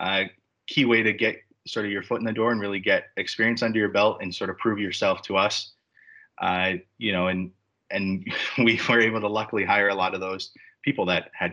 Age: 30-49